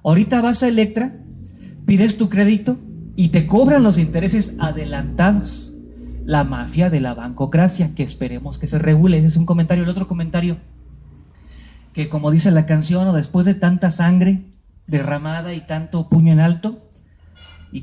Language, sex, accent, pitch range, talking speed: Spanish, male, Mexican, 135-175 Hz, 160 wpm